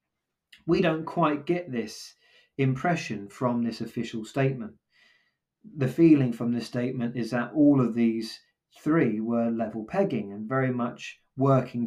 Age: 30-49